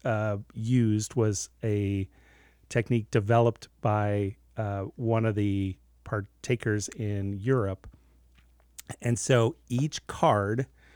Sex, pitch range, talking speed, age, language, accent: male, 90-115 Hz, 100 wpm, 40-59, English, American